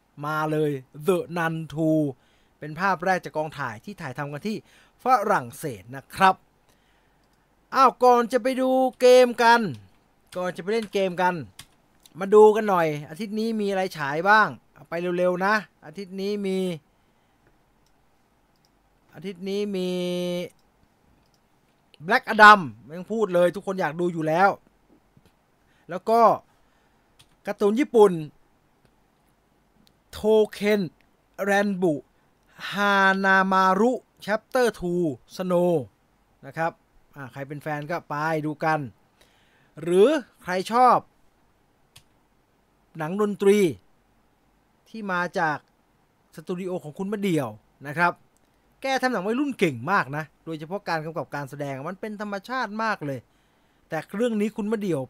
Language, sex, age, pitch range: English, male, 20-39, 155-210 Hz